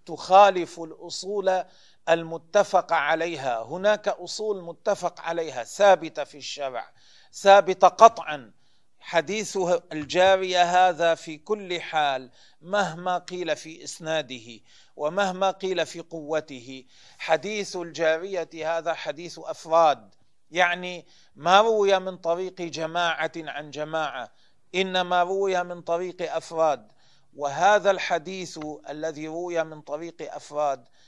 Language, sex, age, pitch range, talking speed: Arabic, male, 40-59, 150-185 Hz, 100 wpm